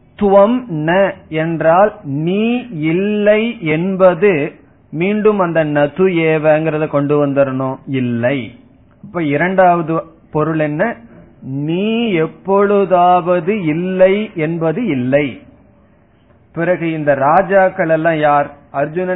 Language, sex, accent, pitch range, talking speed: Tamil, male, native, 140-185 Hz, 45 wpm